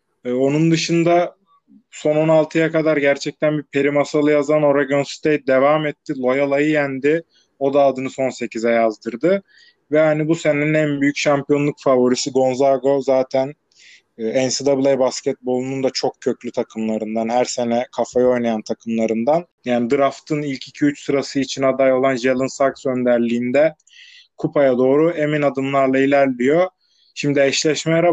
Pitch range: 130-155 Hz